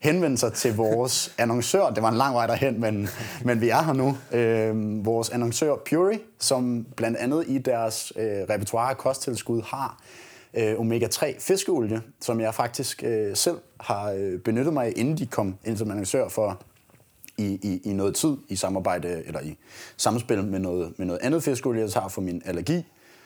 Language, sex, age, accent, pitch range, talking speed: Danish, male, 30-49, native, 105-120 Hz, 180 wpm